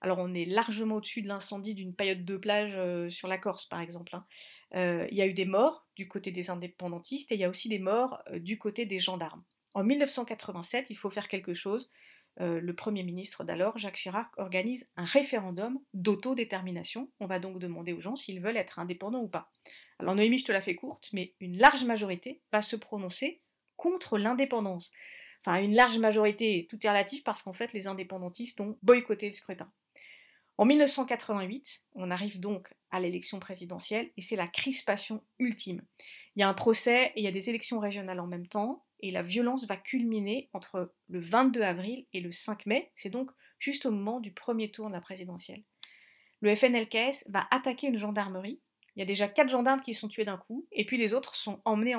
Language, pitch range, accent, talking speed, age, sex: French, 190-240 Hz, French, 205 wpm, 40-59, female